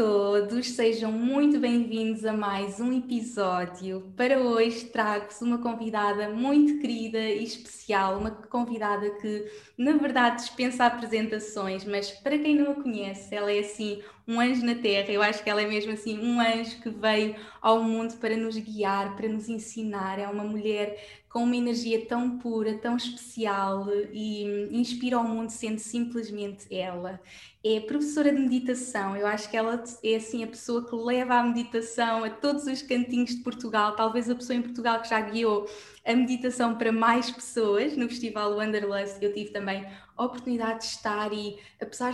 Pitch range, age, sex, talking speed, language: 205-240 Hz, 20-39, female, 170 wpm, Portuguese